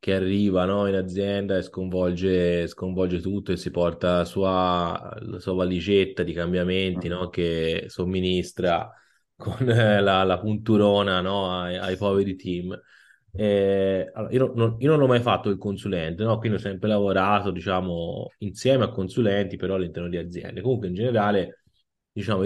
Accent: native